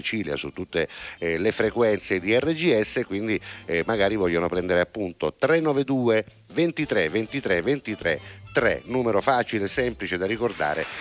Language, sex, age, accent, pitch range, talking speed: Italian, male, 50-69, native, 90-120 Hz, 115 wpm